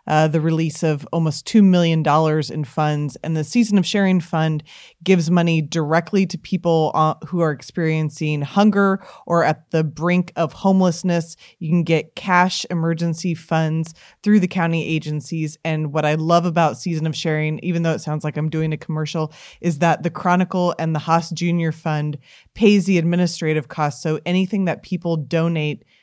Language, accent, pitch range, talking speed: English, American, 155-180 Hz, 175 wpm